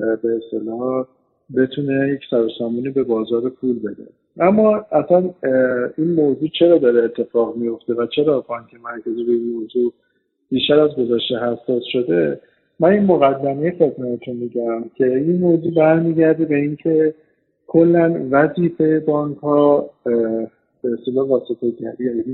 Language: Persian